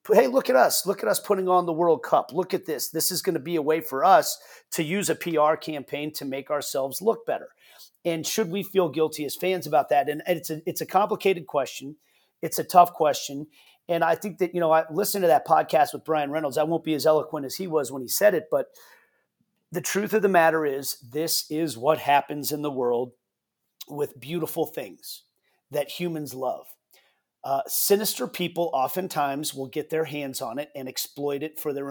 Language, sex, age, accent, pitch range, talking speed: English, male, 40-59, American, 145-180 Hz, 215 wpm